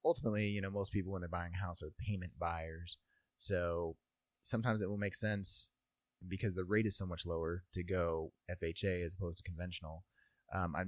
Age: 30-49